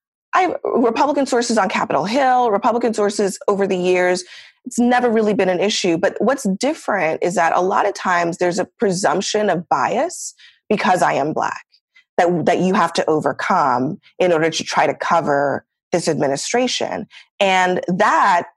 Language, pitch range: English, 160-210 Hz